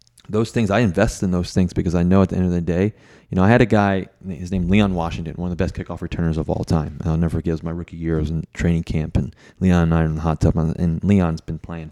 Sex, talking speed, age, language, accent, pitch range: male, 290 wpm, 30-49, English, American, 80-100 Hz